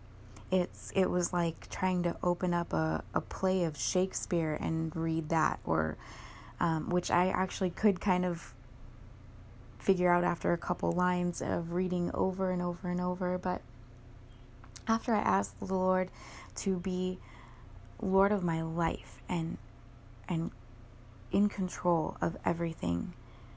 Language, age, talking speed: English, 20-39, 140 wpm